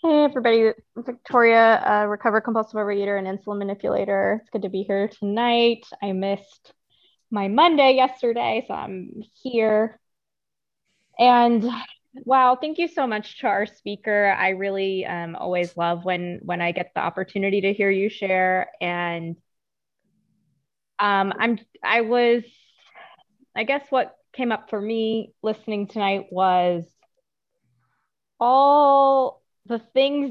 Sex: female